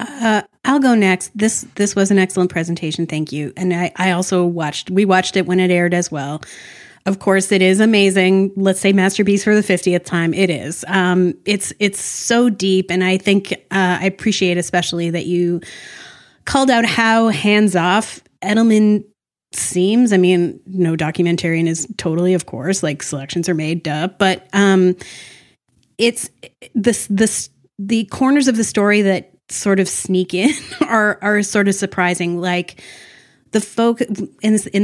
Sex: female